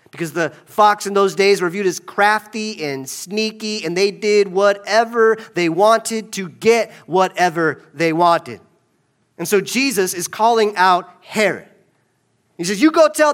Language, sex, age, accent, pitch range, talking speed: English, male, 40-59, American, 140-200 Hz, 155 wpm